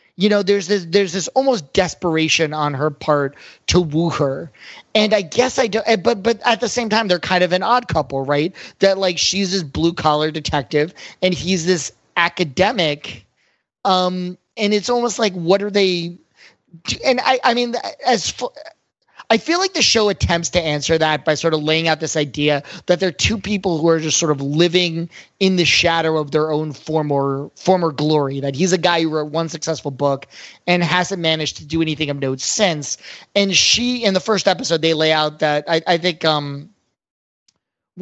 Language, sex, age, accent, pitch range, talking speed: English, male, 30-49, American, 155-190 Hz, 200 wpm